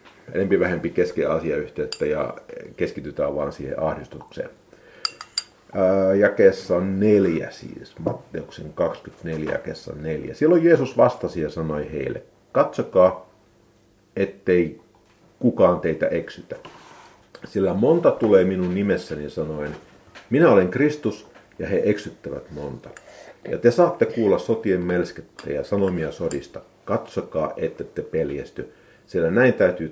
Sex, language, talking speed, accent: male, Finnish, 110 wpm, native